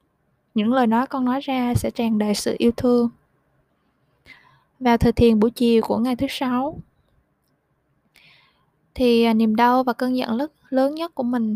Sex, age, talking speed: female, 20-39, 160 wpm